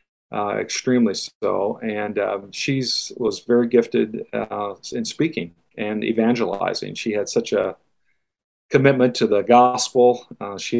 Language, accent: English, American